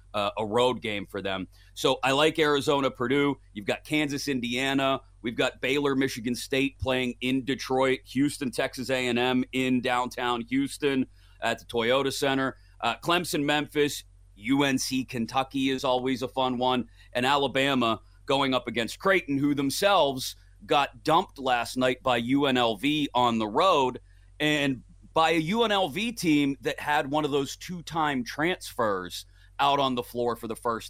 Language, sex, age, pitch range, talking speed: English, male, 30-49, 115-140 Hz, 160 wpm